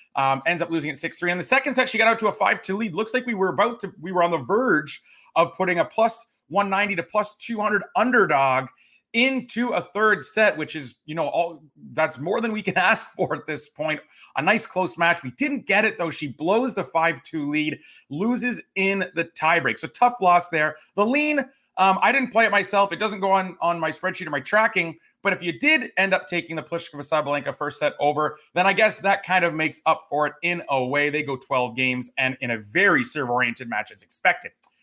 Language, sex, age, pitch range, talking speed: English, male, 30-49, 155-215 Hz, 230 wpm